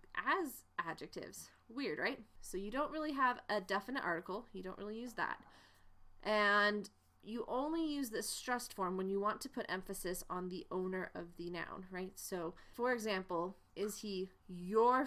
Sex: female